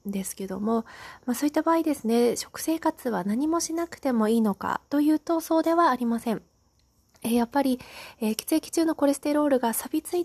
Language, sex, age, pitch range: Japanese, female, 20-39, 210-290 Hz